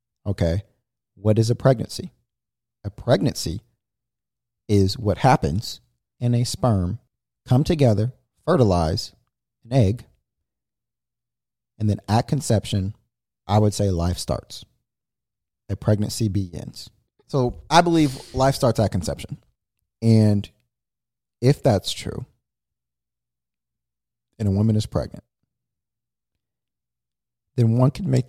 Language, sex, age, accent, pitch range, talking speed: English, male, 40-59, American, 85-120 Hz, 105 wpm